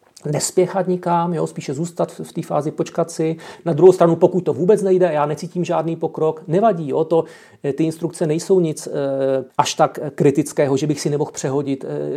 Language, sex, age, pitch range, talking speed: Czech, male, 40-59, 135-165 Hz, 190 wpm